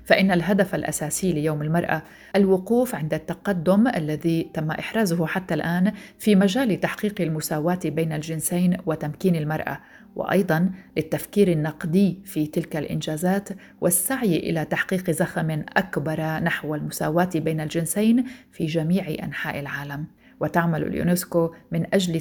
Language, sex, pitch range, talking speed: Arabic, female, 160-195 Hz, 120 wpm